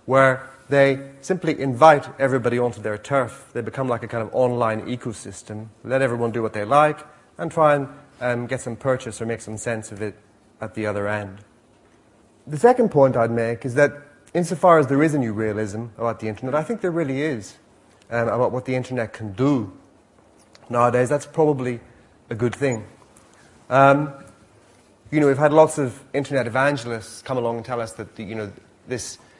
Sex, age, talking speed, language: male, 30-49, 190 wpm, English